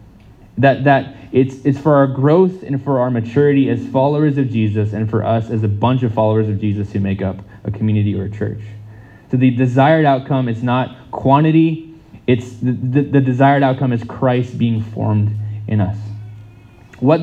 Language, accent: English, American